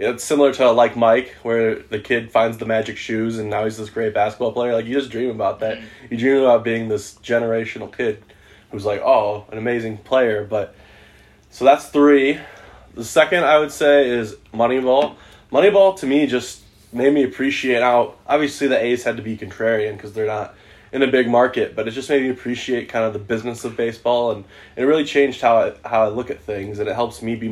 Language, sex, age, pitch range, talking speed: English, male, 20-39, 105-125 Hz, 220 wpm